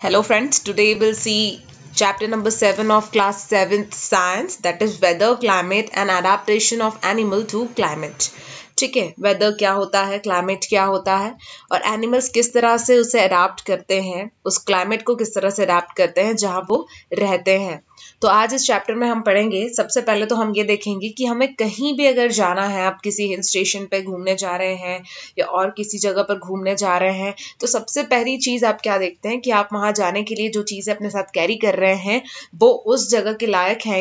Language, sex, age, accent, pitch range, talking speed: English, female, 20-39, Indian, 190-220 Hz, 165 wpm